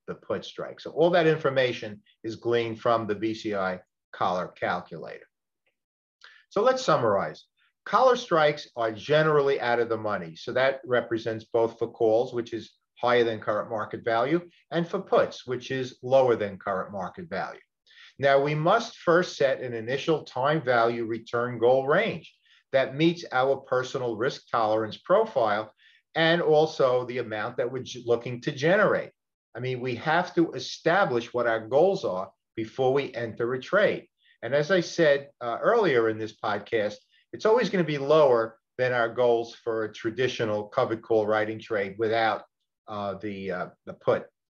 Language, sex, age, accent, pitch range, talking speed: English, male, 50-69, American, 115-150 Hz, 165 wpm